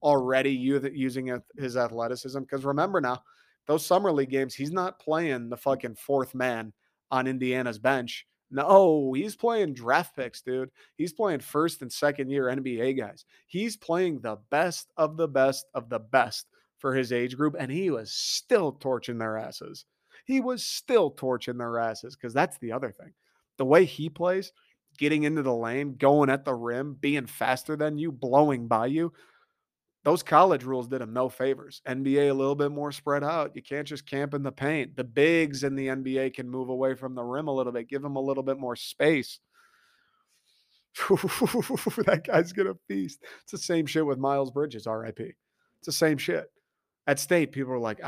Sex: male